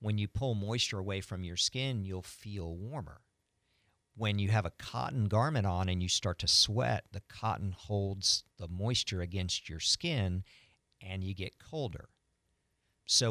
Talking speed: 160 wpm